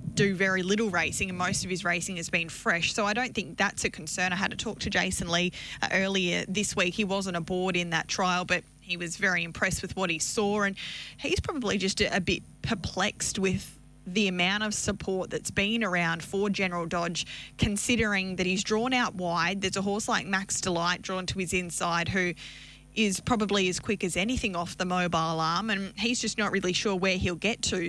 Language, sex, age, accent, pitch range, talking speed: English, female, 20-39, Australian, 180-205 Hz, 215 wpm